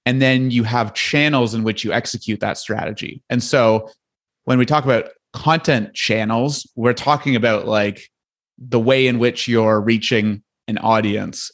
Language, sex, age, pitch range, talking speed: English, male, 30-49, 110-125 Hz, 160 wpm